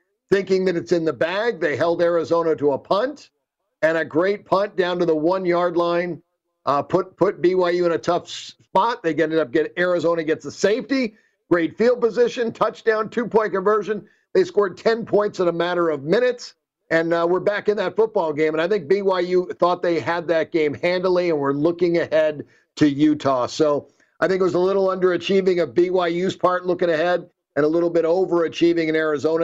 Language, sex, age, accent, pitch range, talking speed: English, male, 50-69, American, 160-185 Hz, 195 wpm